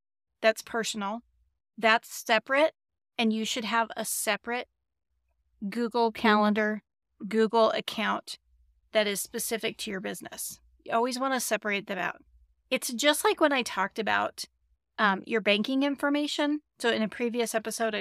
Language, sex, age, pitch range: English, female, 30-49, 195-235 Hz